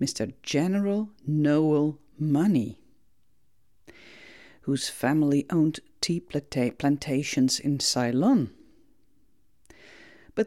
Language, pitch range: Dutch, 135-210 Hz